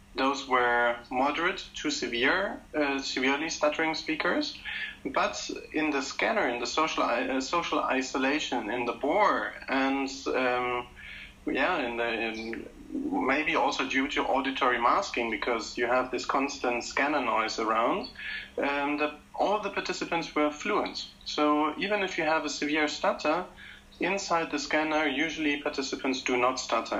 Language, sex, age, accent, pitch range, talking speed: English, male, 40-59, German, 125-160 Hz, 145 wpm